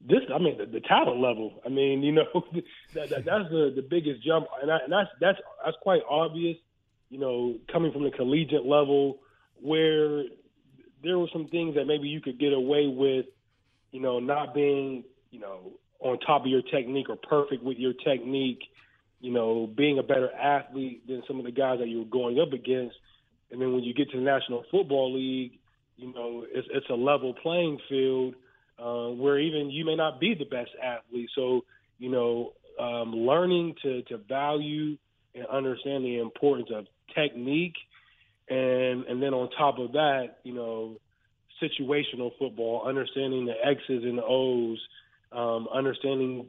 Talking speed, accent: 180 wpm, American